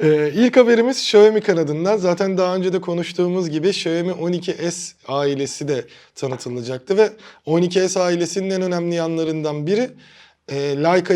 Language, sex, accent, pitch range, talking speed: Turkish, male, native, 155-195 Hz, 135 wpm